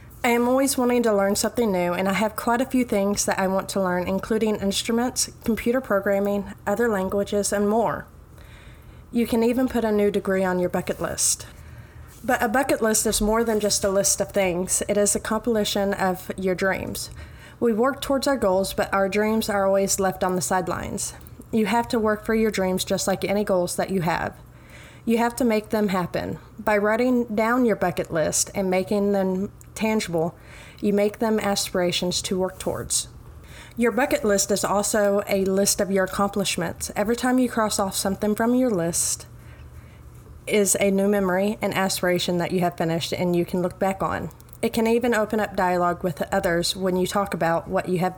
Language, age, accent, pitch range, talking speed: English, 30-49, American, 185-220 Hz, 200 wpm